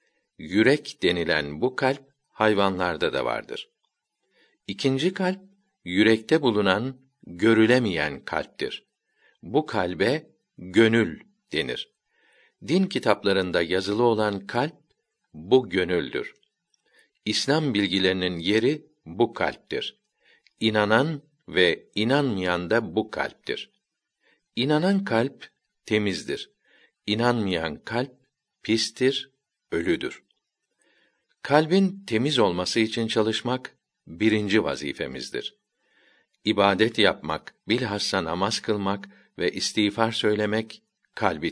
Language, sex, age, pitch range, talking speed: Turkish, male, 60-79, 100-135 Hz, 85 wpm